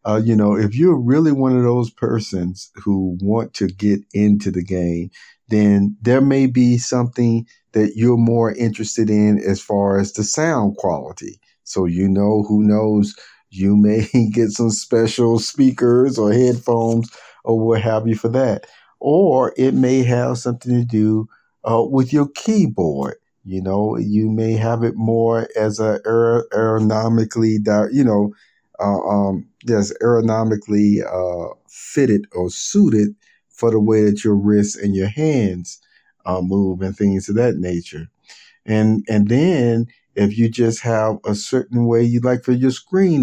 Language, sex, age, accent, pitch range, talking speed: English, male, 50-69, American, 105-120 Hz, 160 wpm